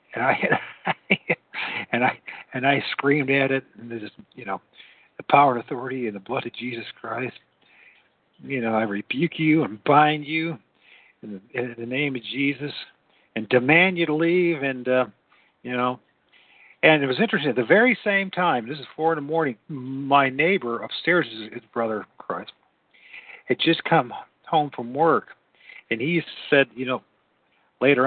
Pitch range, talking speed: 120-150 Hz, 175 wpm